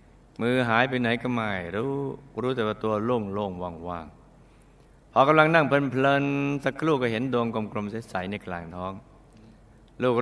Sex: male